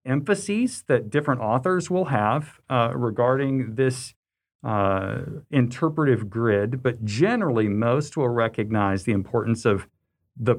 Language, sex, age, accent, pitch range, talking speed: English, male, 50-69, American, 110-140 Hz, 120 wpm